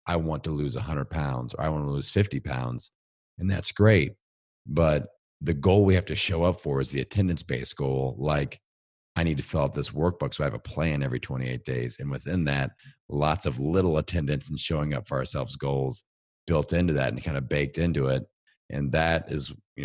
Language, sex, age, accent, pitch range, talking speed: English, male, 40-59, American, 70-85 Hz, 220 wpm